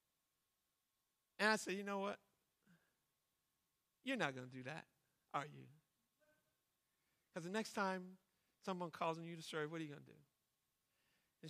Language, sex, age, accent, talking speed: English, male, 50-69, American, 160 wpm